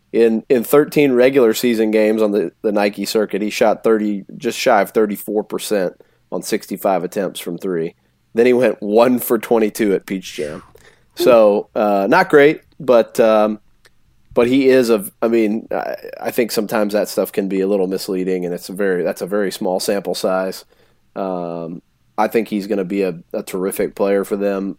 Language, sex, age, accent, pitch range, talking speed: English, male, 30-49, American, 100-120 Hz, 190 wpm